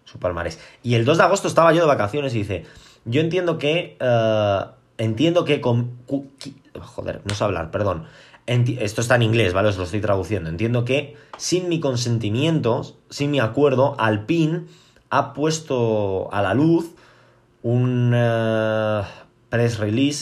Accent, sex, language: Spanish, male, Spanish